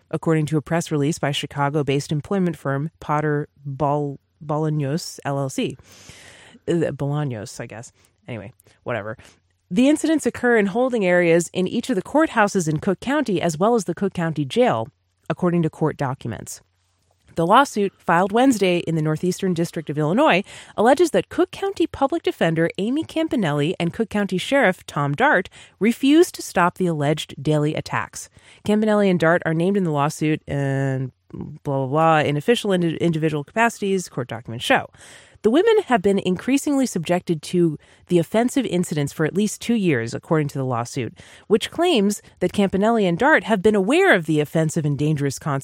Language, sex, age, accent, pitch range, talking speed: English, female, 30-49, American, 145-215 Hz, 165 wpm